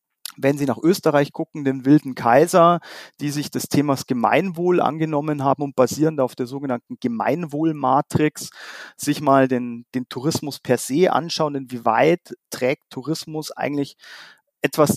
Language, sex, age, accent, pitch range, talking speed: German, male, 40-59, German, 130-160 Hz, 135 wpm